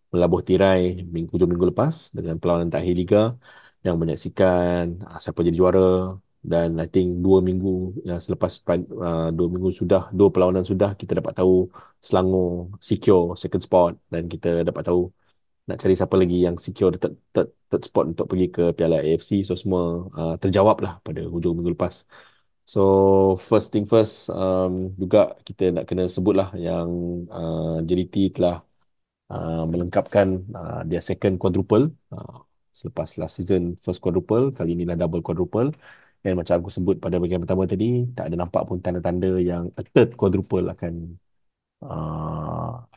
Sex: male